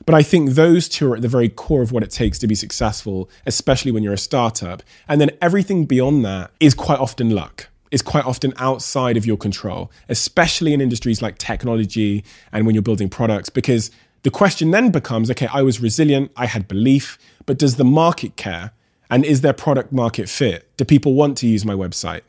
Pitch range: 110-145 Hz